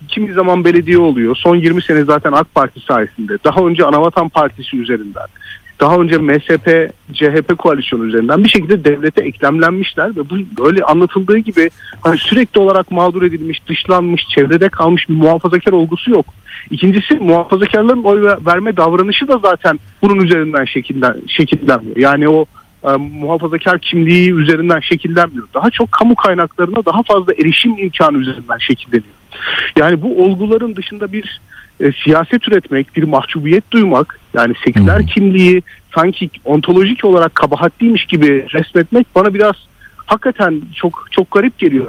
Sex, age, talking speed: male, 40-59, 140 wpm